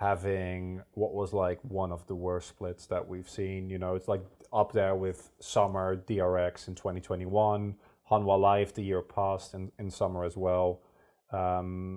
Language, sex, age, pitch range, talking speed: English, male, 30-49, 95-115 Hz, 175 wpm